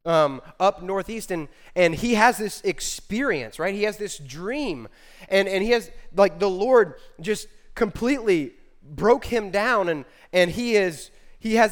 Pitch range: 155-220 Hz